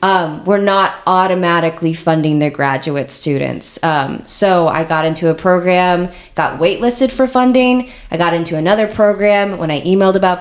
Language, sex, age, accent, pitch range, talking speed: English, female, 20-39, American, 165-215 Hz, 160 wpm